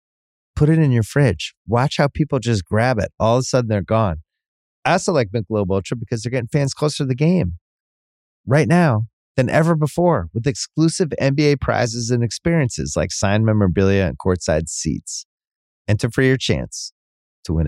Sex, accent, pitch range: male, American, 105-155 Hz